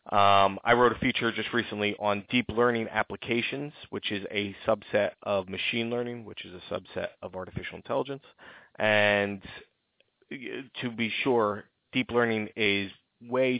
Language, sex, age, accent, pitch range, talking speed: English, male, 30-49, American, 100-120 Hz, 145 wpm